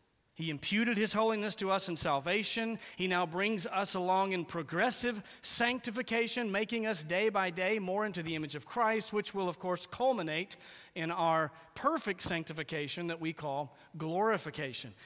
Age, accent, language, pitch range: 40-59, American, English, 155-215 Hz